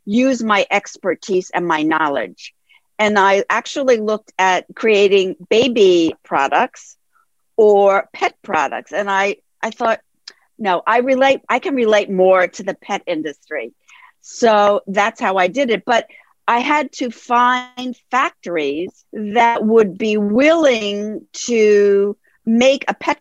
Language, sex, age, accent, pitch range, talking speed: English, female, 50-69, American, 195-250 Hz, 130 wpm